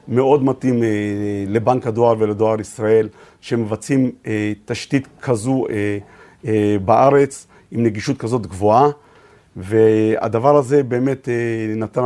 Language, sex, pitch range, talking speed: Hebrew, male, 110-135 Hz, 90 wpm